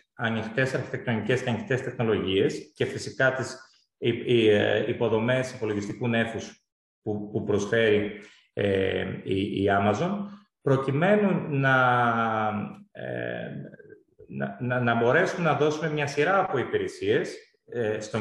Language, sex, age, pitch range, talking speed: Greek, male, 30-49, 120-170 Hz, 90 wpm